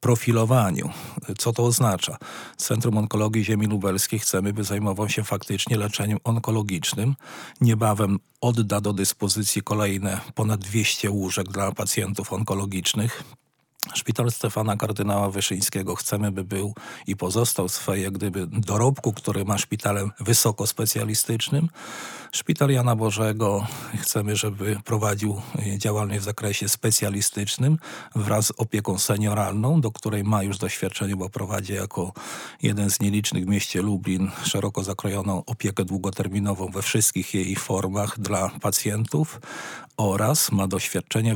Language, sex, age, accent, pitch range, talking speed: Polish, male, 40-59, native, 100-115 Hz, 120 wpm